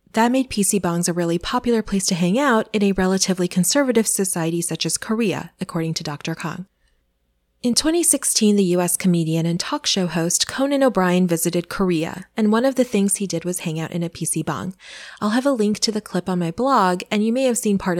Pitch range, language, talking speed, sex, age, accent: 170-220 Hz, English, 220 wpm, female, 20-39, American